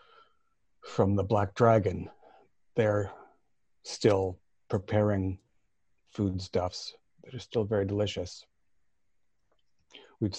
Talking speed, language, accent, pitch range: 80 wpm, English, American, 100-120 Hz